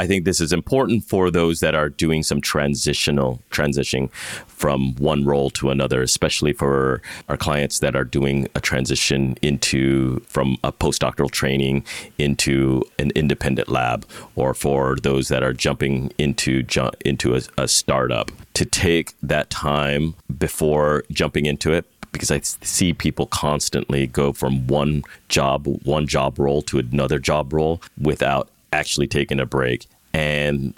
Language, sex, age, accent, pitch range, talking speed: English, male, 30-49, American, 70-80 Hz, 150 wpm